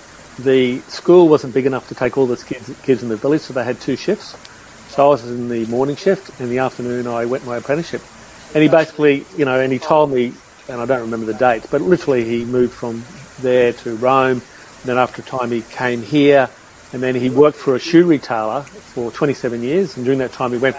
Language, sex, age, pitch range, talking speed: English, male, 40-59, 120-140 Hz, 235 wpm